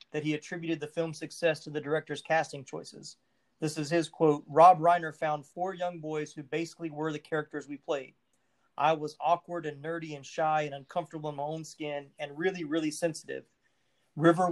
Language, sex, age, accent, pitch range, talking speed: English, male, 30-49, American, 145-165 Hz, 190 wpm